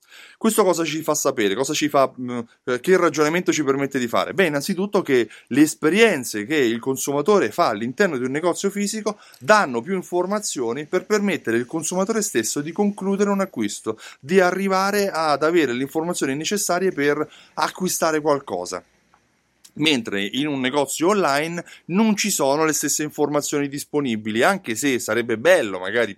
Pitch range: 120-180 Hz